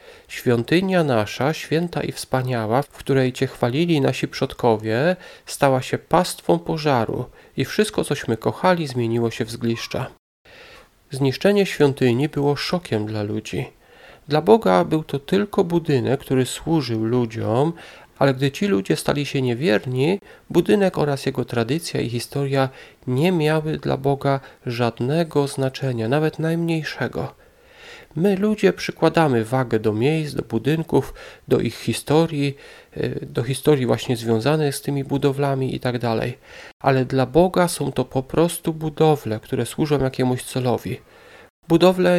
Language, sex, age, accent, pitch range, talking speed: Polish, male, 40-59, native, 125-155 Hz, 130 wpm